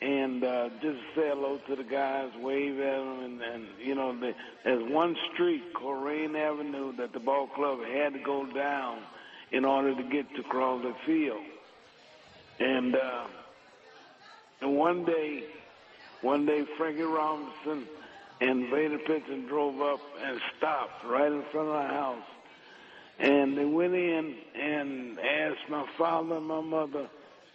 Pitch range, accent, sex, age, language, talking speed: 130-150 Hz, American, male, 60-79, English, 150 wpm